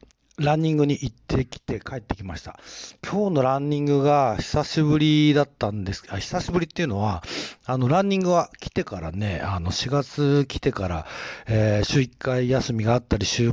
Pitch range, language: 105-145 Hz, Japanese